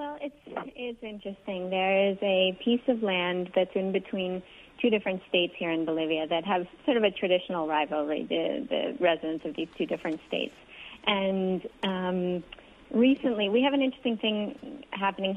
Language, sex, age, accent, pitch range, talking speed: English, female, 30-49, American, 175-205 Hz, 170 wpm